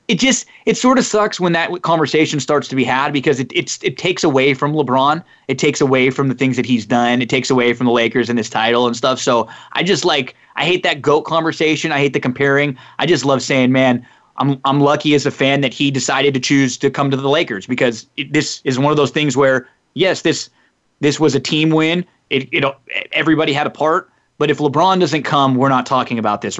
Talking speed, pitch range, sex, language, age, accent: 240 wpm, 130-155 Hz, male, English, 20-39, American